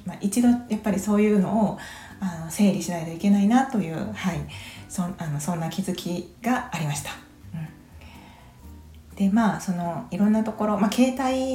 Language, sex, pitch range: Japanese, female, 170-220 Hz